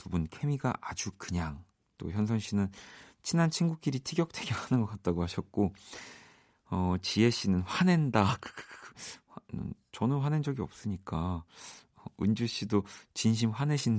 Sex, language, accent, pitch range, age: male, Korean, native, 90-120 Hz, 40-59